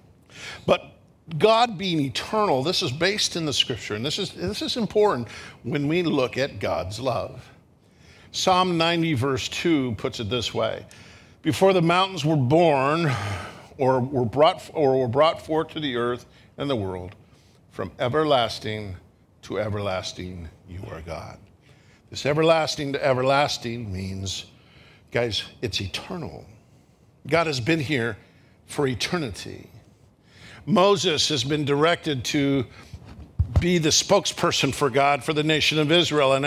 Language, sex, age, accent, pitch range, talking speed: English, male, 50-69, American, 120-175 Hz, 140 wpm